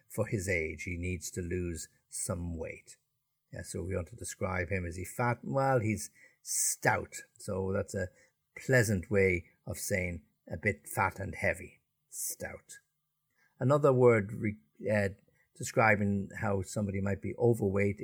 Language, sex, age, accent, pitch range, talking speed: English, male, 60-79, Irish, 90-115 Hz, 150 wpm